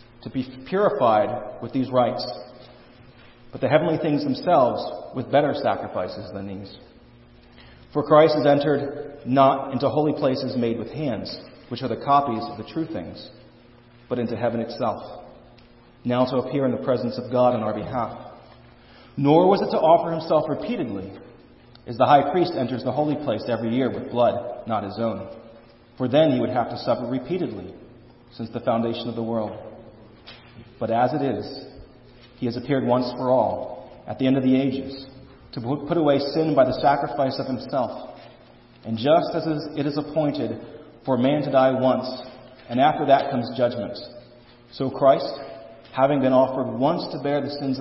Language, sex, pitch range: English, male, 115-135 Hz